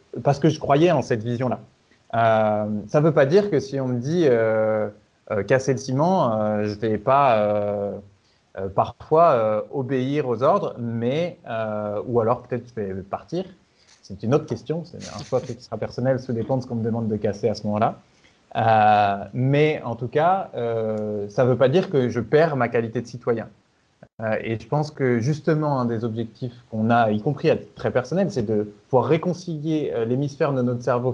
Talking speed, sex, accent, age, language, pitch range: 210 wpm, male, French, 30-49, French, 115-145 Hz